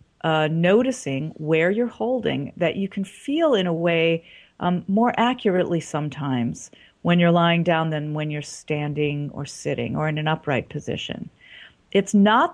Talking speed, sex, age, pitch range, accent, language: 160 wpm, female, 40-59, 155-180 Hz, American, English